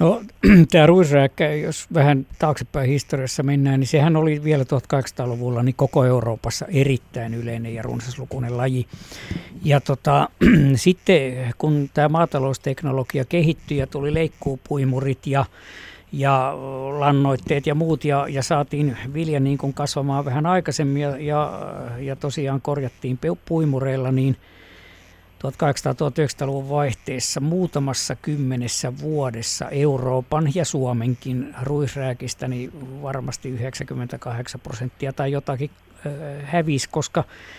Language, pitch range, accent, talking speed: Finnish, 130-150 Hz, native, 110 wpm